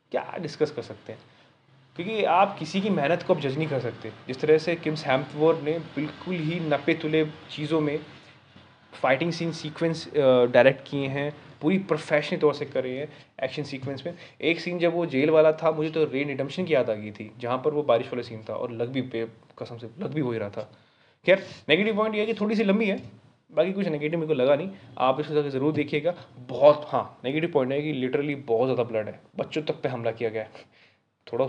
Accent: native